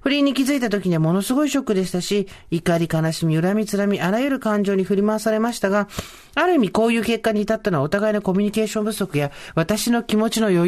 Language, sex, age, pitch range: Japanese, male, 40-59, 160-215 Hz